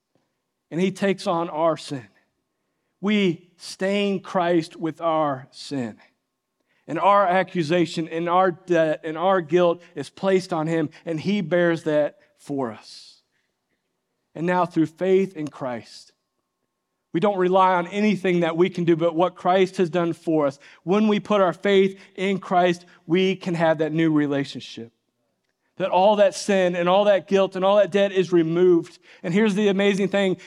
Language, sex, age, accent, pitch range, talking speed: English, male, 40-59, American, 165-195 Hz, 165 wpm